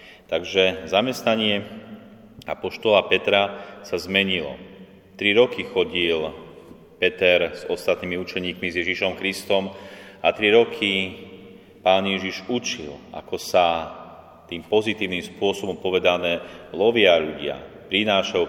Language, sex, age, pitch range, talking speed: Slovak, male, 30-49, 90-110 Hz, 100 wpm